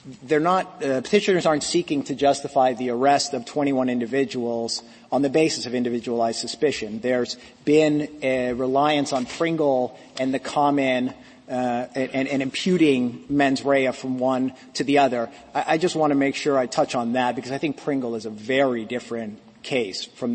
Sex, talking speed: male, 180 wpm